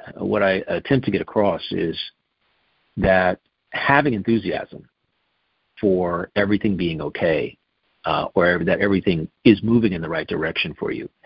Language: English